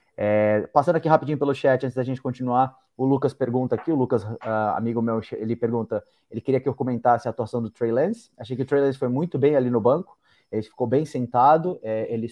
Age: 20-39